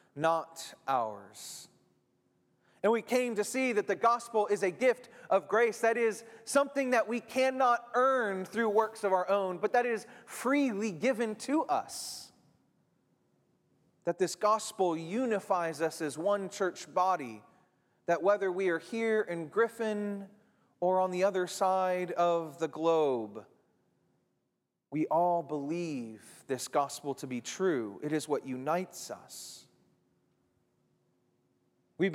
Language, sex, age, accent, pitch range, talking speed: English, male, 30-49, American, 175-230 Hz, 135 wpm